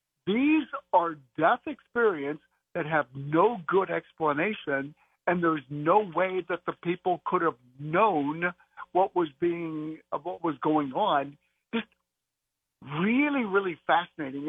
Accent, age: American, 60-79